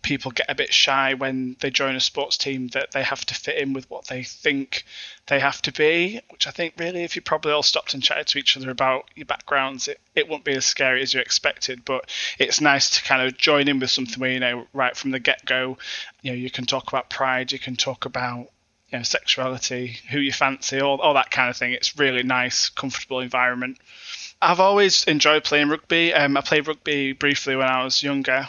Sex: male